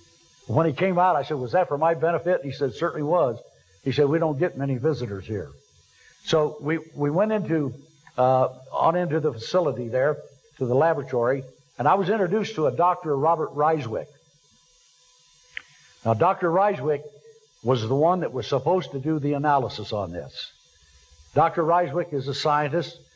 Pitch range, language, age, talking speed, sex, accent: 130-170 Hz, English, 60-79, 170 wpm, male, American